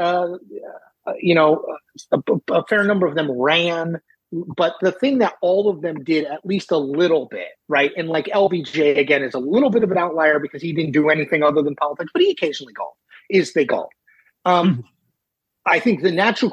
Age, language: 30-49, English